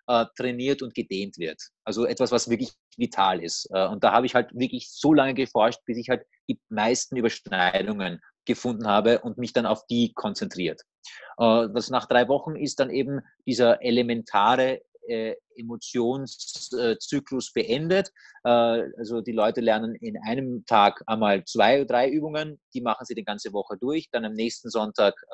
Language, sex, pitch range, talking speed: German, male, 115-140 Hz, 160 wpm